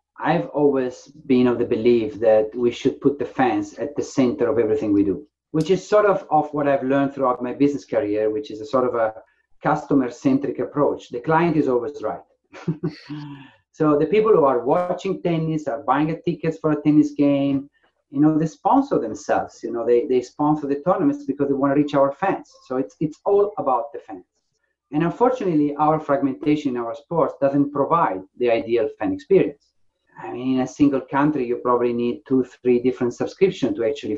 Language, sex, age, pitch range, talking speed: English, male, 40-59, 125-190 Hz, 200 wpm